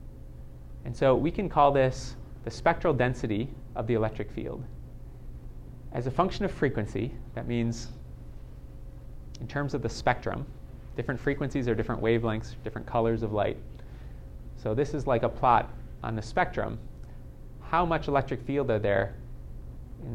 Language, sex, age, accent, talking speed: English, male, 30-49, American, 150 wpm